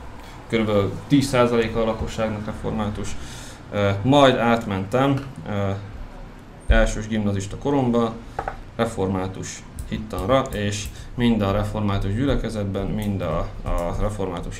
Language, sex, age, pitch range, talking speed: Hungarian, male, 20-39, 100-125 Hz, 80 wpm